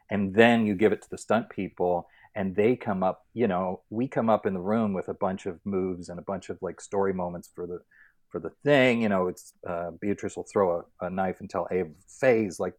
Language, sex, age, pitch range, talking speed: English, male, 40-59, 85-105 Hz, 245 wpm